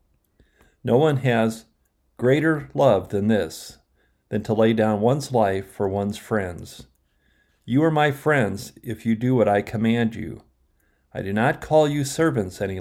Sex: male